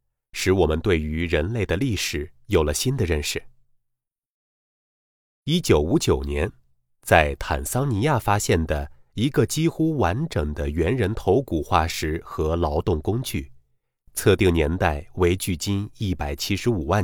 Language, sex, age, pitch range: Chinese, male, 30-49, 70-115 Hz